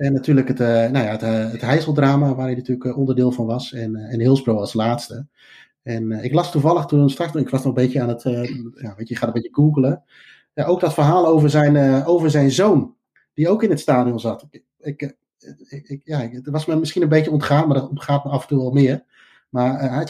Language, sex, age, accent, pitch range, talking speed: Dutch, male, 30-49, Dutch, 120-145 Hz, 225 wpm